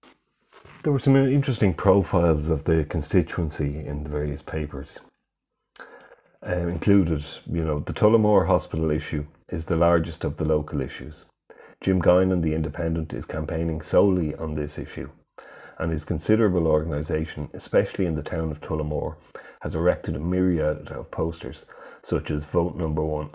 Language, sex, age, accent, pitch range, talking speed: English, male, 30-49, Irish, 75-95 Hz, 150 wpm